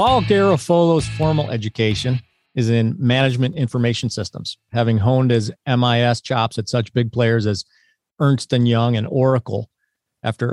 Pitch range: 115-145 Hz